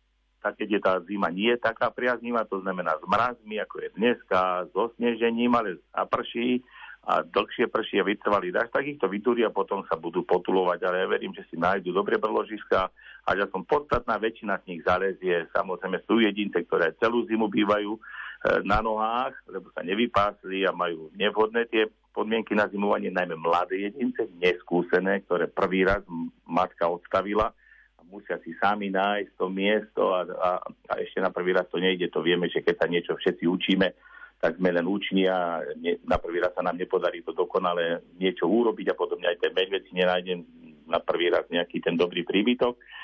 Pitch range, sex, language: 90-115 Hz, male, Slovak